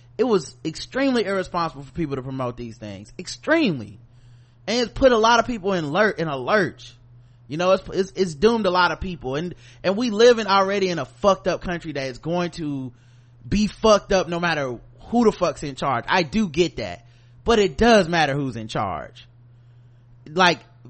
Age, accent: 30-49, American